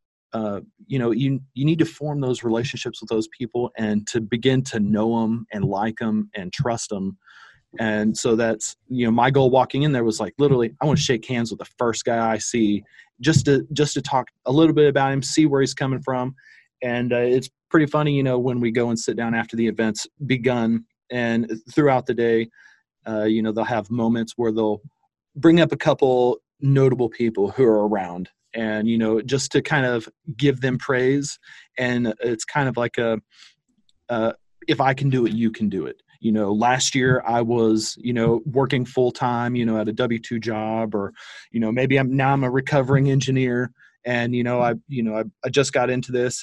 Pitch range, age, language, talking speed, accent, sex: 115-135 Hz, 30-49, English, 215 wpm, American, male